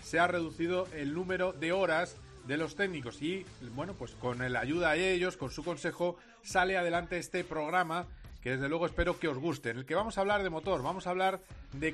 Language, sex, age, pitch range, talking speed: Spanish, male, 40-59, 155-190 Hz, 220 wpm